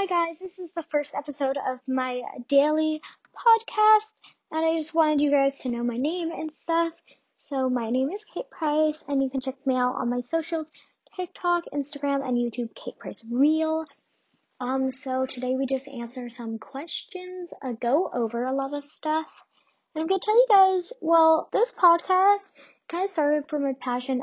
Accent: American